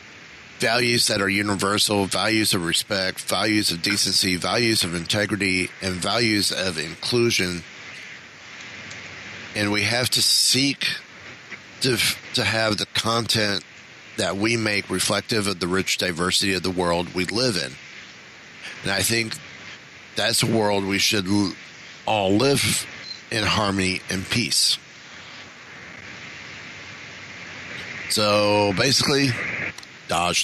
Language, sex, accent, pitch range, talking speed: English, male, American, 95-115 Hz, 115 wpm